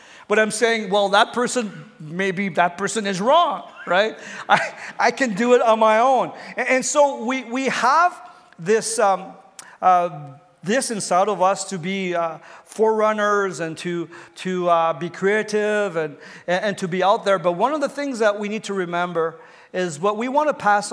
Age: 50-69